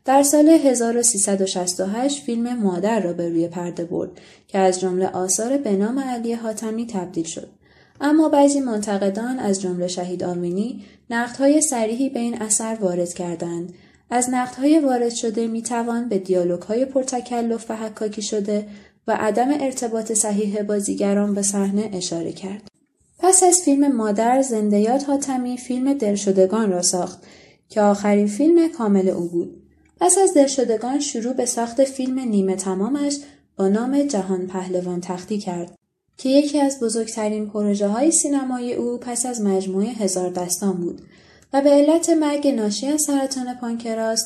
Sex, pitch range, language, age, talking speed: female, 195-255 Hz, Persian, 20-39, 145 wpm